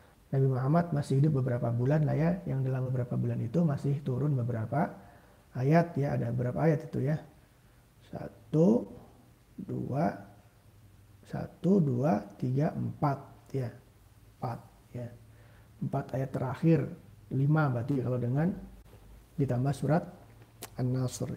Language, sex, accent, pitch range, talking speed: Indonesian, male, native, 115-145 Hz, 120 wpm